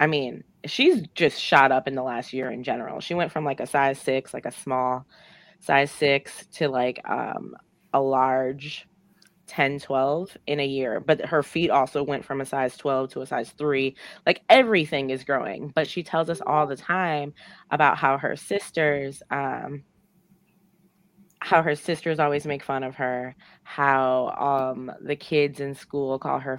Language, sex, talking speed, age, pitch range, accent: English, female, 180 wpm, 20-39, 135-175 Hz, American